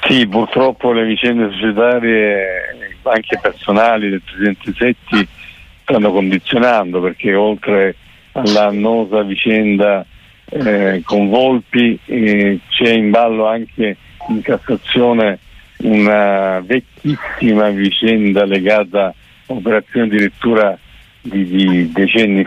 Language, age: Italian, 50-69